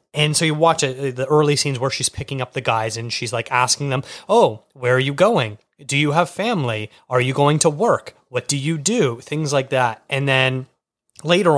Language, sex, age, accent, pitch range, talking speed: English, male, 30-49, American, 120-145 Hz, 220 wpm